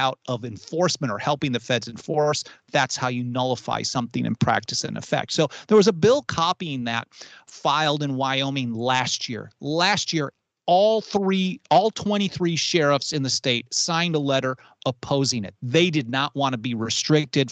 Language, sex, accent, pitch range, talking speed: English, male, American, 130-170 Hz, 170 wpm